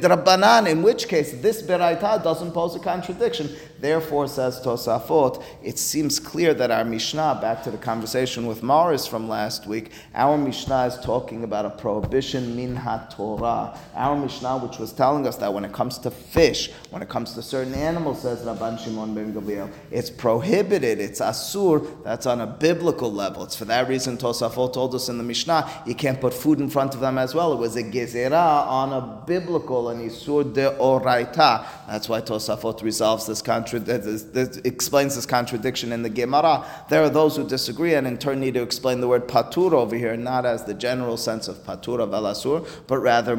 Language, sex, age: English, male, 30-49